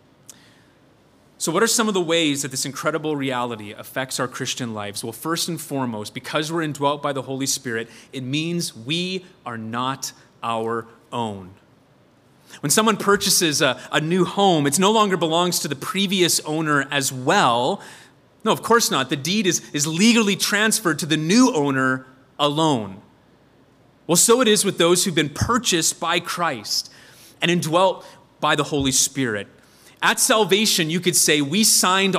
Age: 30-49